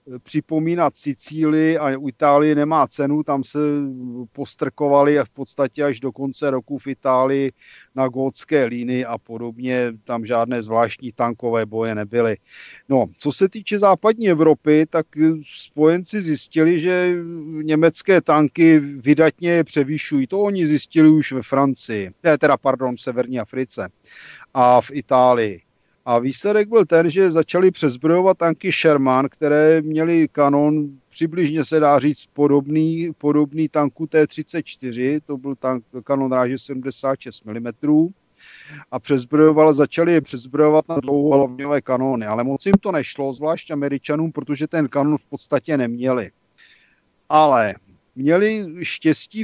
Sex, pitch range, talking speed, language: male, 130-160 Hz, 130 wpm, Slovak